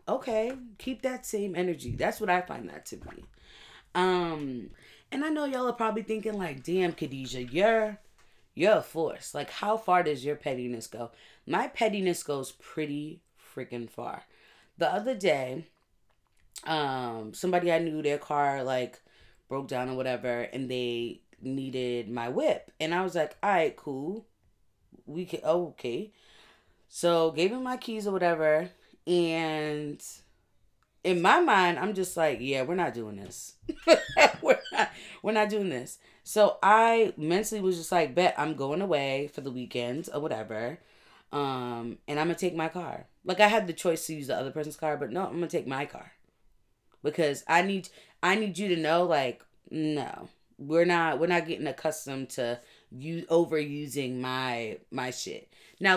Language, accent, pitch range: English, American, 130-185 Hz